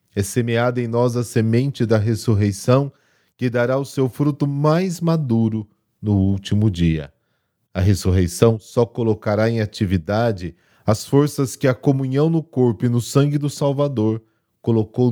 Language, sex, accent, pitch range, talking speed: Portuguese, male, Brazilian, 95-125 Hz, 145 wpm